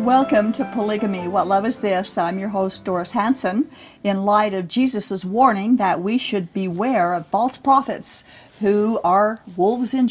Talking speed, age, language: 165 wpm, 50-69, English